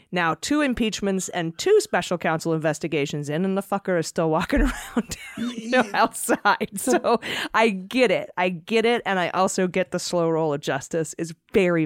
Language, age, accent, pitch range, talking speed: English, 30-49, American, 165-205 Hz, 175 wpm